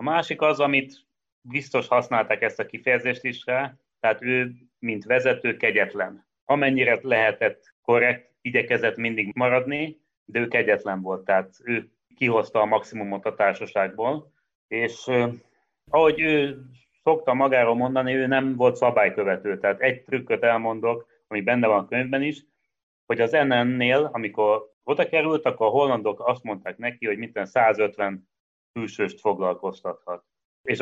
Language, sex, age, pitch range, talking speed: Hungarian, male, 30-49, 105-135 Hz, 140 wpm